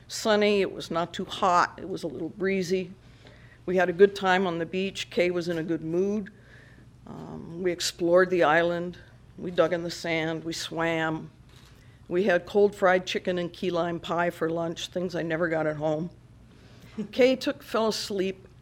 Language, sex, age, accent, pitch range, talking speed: English, female, 50-69, American, 160-190 Hz, 190 wpm